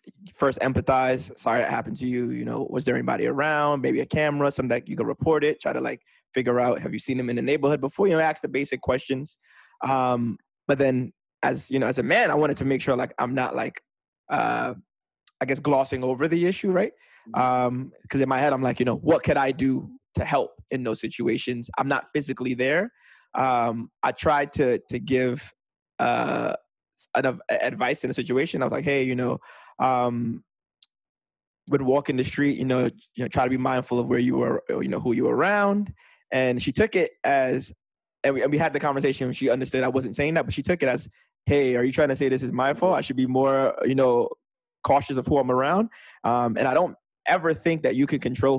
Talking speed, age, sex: 225 wpm, 20-39, male